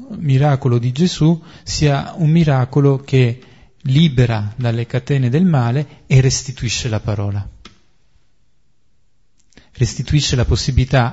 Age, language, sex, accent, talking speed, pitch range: 40-59, Italian, male, native, 100 wpm, 120-150 Hz